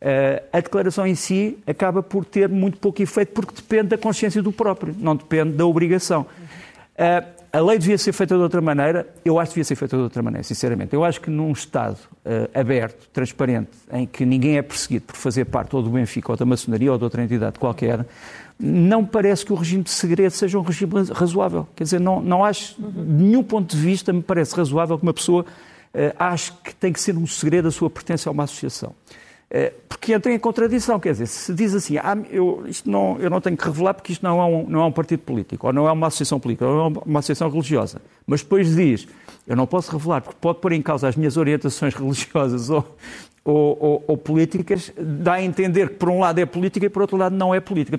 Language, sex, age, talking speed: Portuguese, male, 50-69, 230 wpm